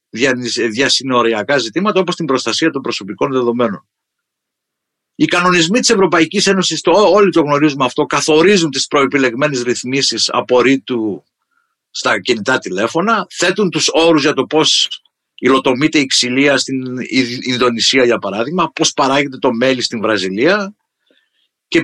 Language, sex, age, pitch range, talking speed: Greek, male, 50-69, 130-210 Hz, 130 wpm